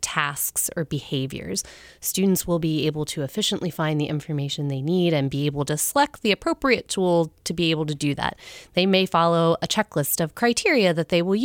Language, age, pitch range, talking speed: English, 30-49, 150-185 Hz, 200 wpm